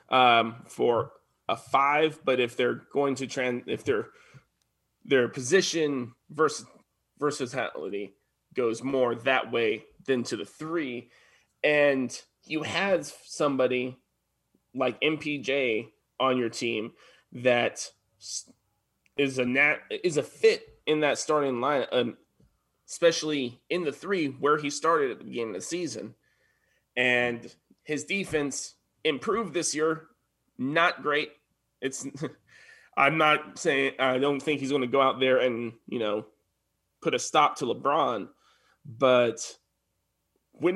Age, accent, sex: 20-39, American, male